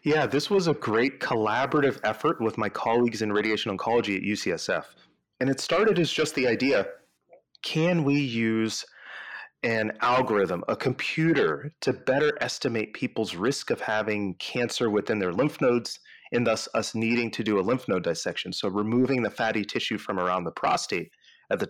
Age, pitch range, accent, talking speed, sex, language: 30-49, 105-140 Hz, American, 170 wpm, male, English